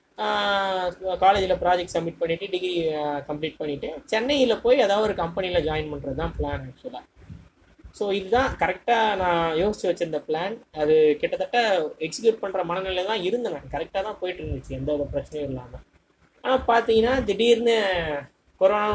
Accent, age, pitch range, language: native, 20-39, 155-195 Hz, Tamil